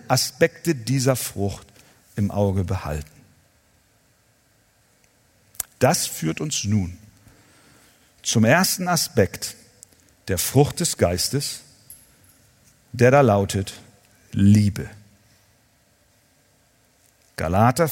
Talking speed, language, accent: 75 wpm, German, German